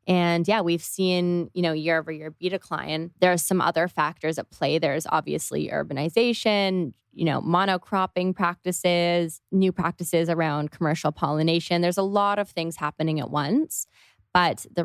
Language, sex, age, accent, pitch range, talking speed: English, female, 20-39, American, 155-190 Hz, 160 wpm